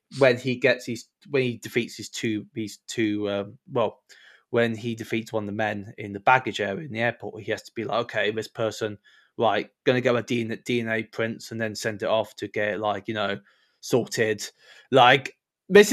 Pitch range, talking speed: 110-135 Hz, 205 wpm